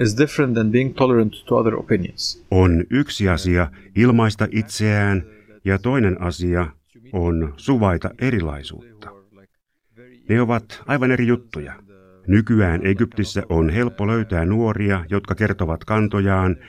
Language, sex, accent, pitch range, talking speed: Finnish, male, native, 90-110 Hz, 90 wpm